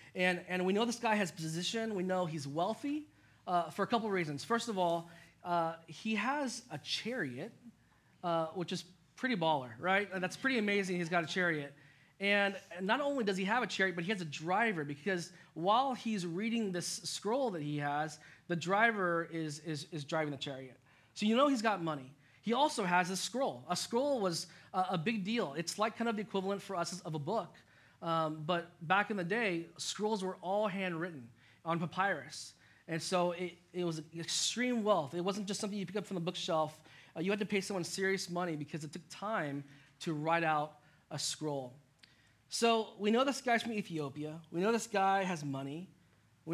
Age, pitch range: 20-39, 155-200 Hz